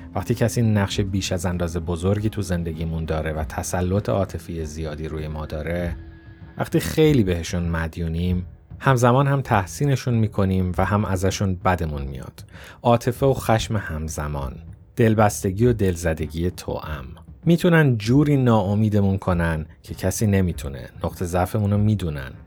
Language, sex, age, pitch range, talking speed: Persian, male, 30-49, 85-115 Hz, 135 wpm